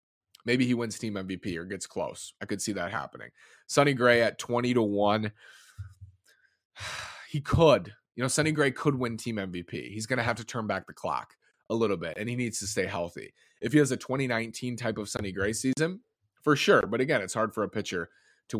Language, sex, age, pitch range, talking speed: English, male, 20-39, 100-120 Hz, 215 wpm